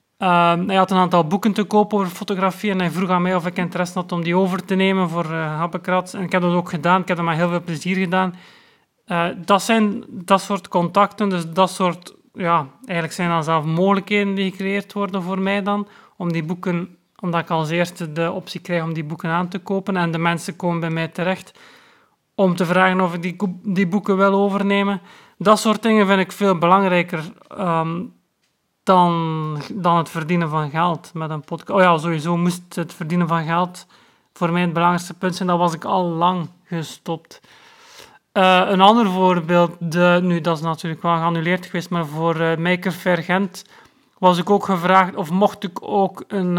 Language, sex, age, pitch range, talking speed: Dutch, male, 30-49, 170-195 Hz, 205 wpm